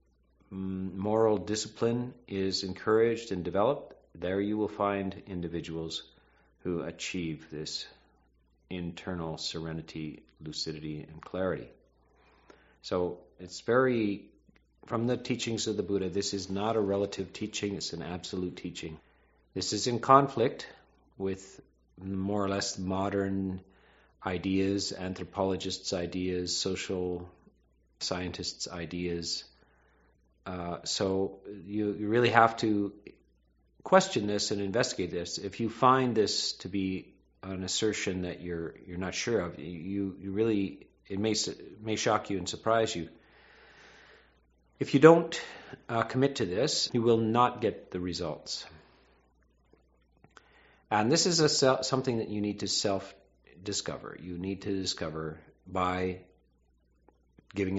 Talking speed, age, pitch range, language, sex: 125 wpm, 40-59, 85-105 Hz, English, male